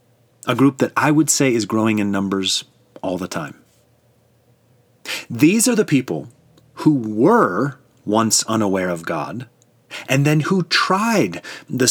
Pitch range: 115-145 Hz